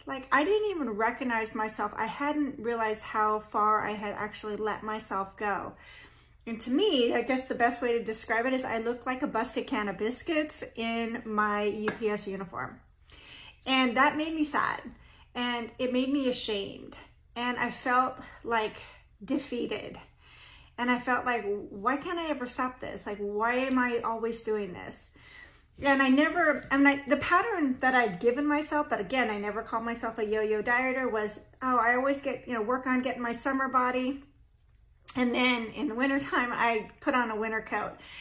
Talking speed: 180 wpm